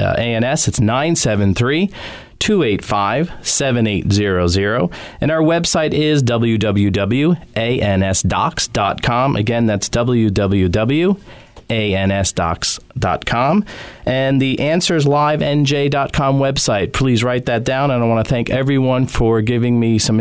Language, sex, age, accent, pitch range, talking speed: English, male, 40-59, American, 110-145 Hz, 90 wpm